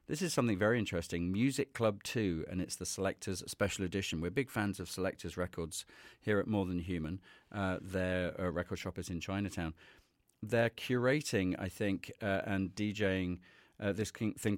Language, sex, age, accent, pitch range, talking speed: English, male, 40-59, British, 90-105 Hz, 175 wpm